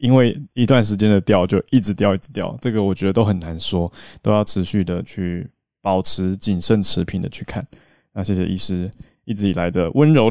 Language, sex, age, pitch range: Chinese, male, 20-39, 95-115 Hz